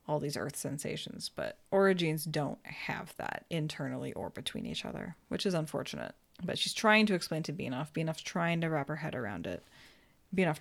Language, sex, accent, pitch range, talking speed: English, female, American, 150-185 Hz, 185 wpm